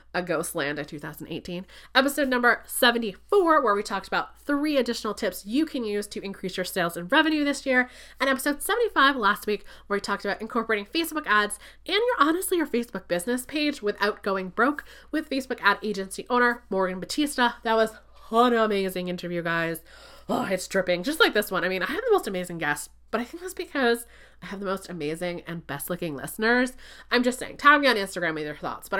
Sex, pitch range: female, 190-260 Hz